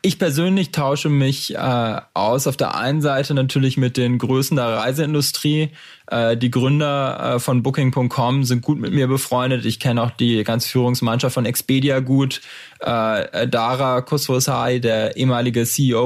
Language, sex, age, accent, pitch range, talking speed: German, male, 20-39, German, 120-140 Hz, 155 wpm